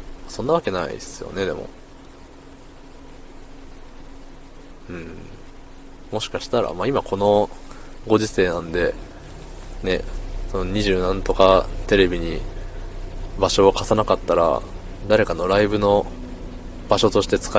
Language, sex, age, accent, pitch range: Japanese, male, 20-39, native, 85-105 Hz